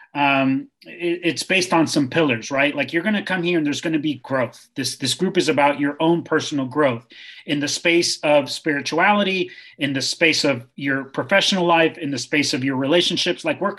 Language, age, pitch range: English, 30-49, 140-175 Hz